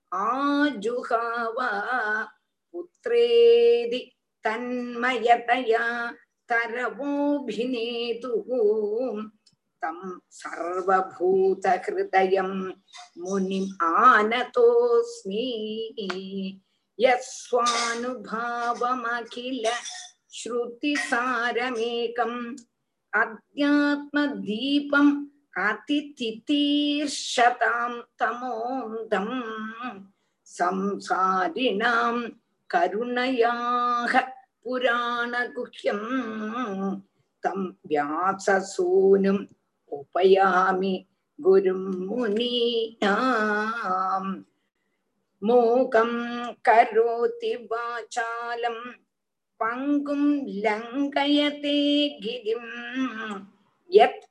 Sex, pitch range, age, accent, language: female, 210-255 Hz, 50-69, native, Tamil